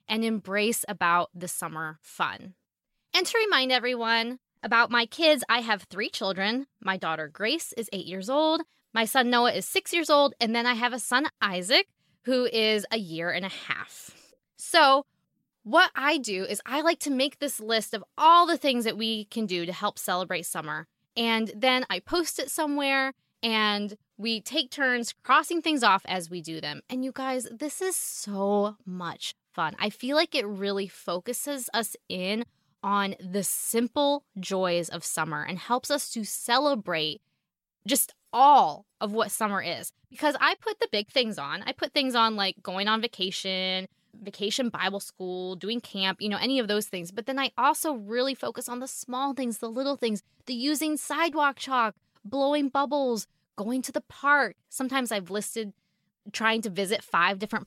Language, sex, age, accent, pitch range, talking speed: English, female, 10-29, American, 195-270 Hz, 180 wpm